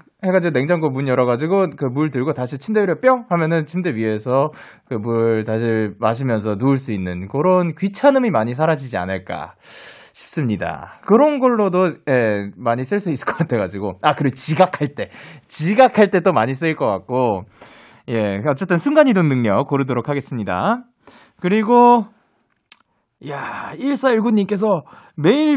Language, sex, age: Korean, male, 20-39